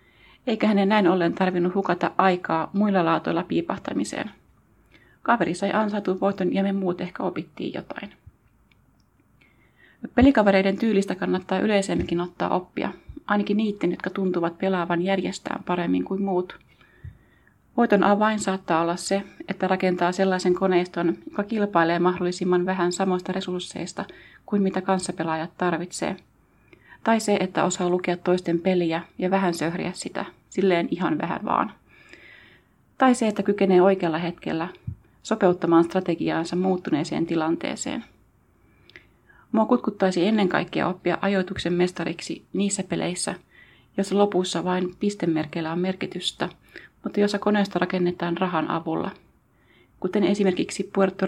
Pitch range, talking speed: 175-195 Hz, 120 wpm